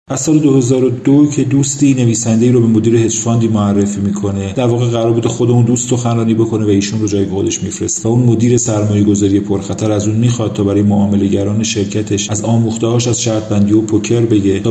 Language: Persian